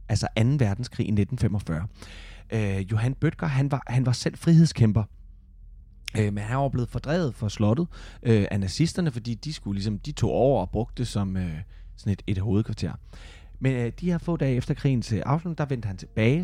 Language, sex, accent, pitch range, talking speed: Danish, male, native, 95-140 Hz, 200 wpm